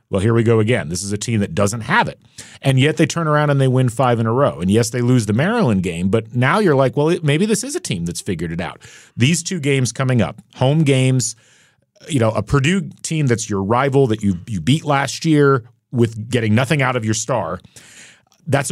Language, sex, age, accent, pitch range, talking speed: English, male, 40-59, American, 110-135 Hz, 240 wpm